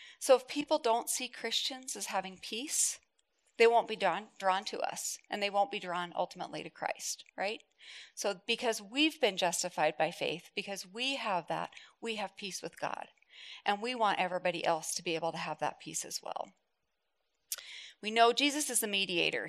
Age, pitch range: 40-59, 165-215 Hz